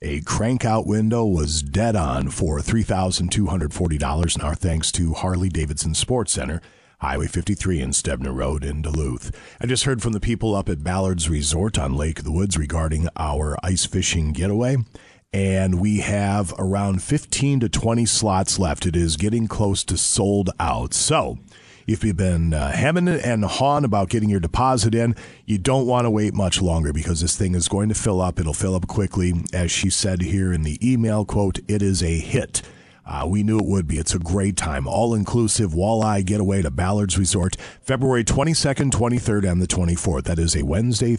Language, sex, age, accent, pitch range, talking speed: English, male, 40-59, American, 85-110 Hz, 185 wpm